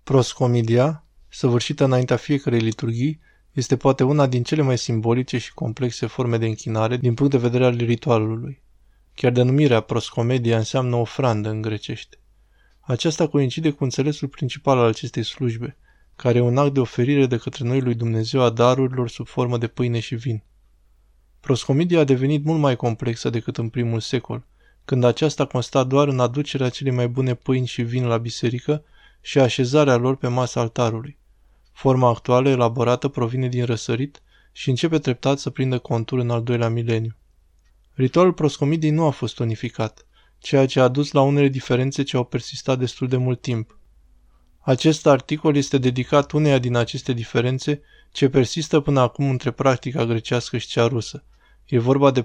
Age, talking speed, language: 20-39, 165 wpm, Romanian